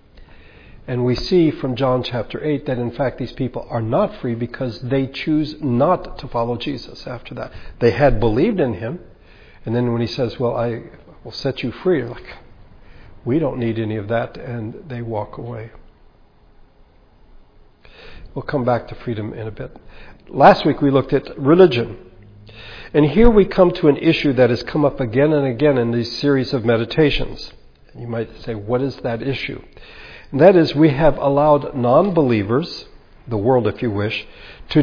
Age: 60-79